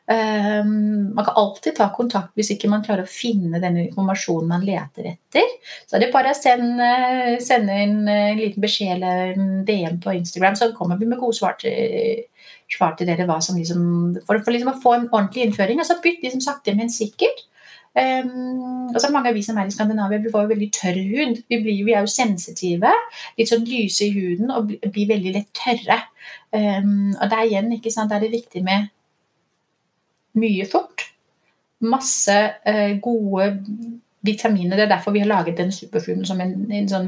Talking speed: 195 wpm